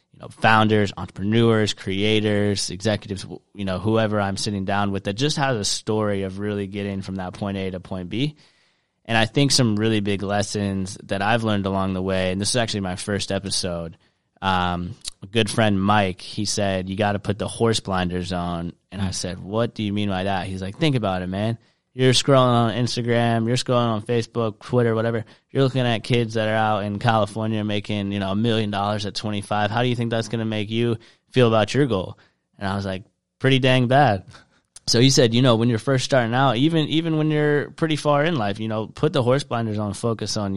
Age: 20-39